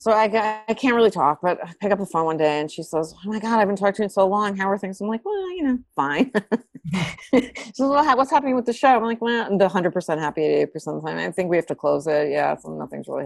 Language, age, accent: English, 30-49, American